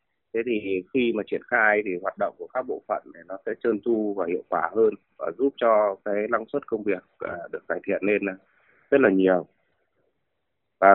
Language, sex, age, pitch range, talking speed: Vietnamese, male, 20-39, 90-120 Hz, 210 wpm